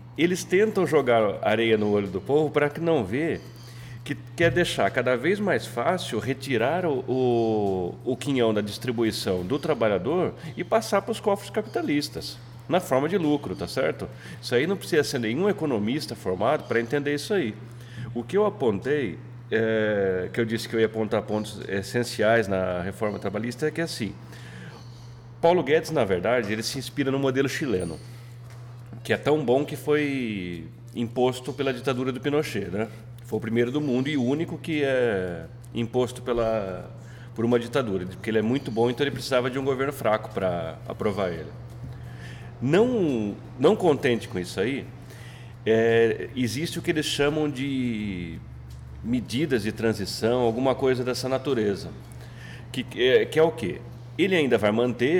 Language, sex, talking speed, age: Portuguese, male, 165 wpm, 40-59